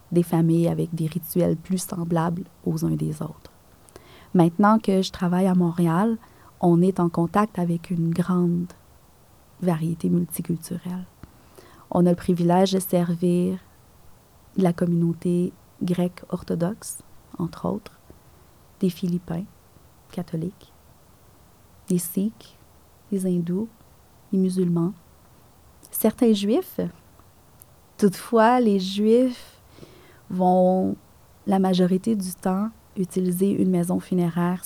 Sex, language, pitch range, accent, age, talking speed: female, French, 175-195 Hz, Canadian, 30-49, 105 wpm